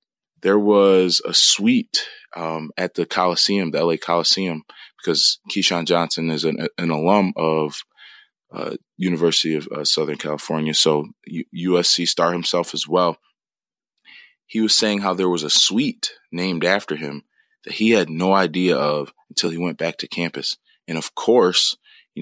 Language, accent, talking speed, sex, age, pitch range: English, American, 160 wpm, male, 20-39, 80-105 Hz